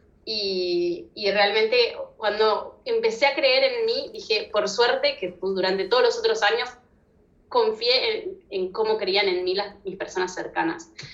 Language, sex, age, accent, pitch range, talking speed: Italian, female, 20-39, Argentinian, 180-245 Hz, 155 wpm